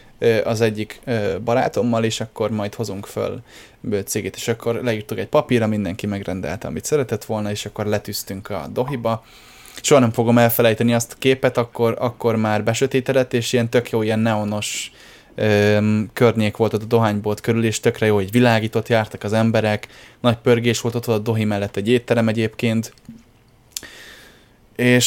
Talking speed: 160 wpm